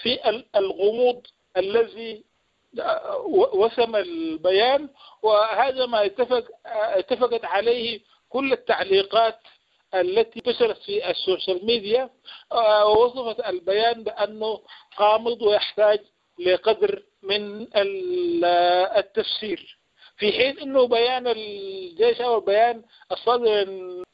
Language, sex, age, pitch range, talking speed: English, male, 50-69, 185-255 Hz, 80 wpm